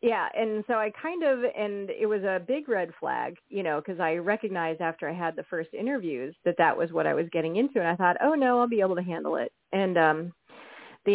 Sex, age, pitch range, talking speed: female, 30-49, 180-230 Hz, 250 wpm